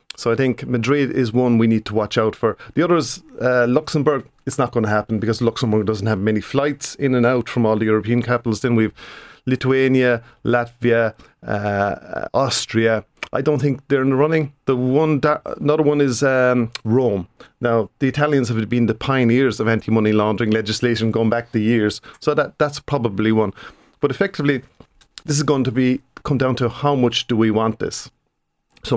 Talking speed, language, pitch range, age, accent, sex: 195 wpm, English, 110-135 Hz, 40-59, Irish, male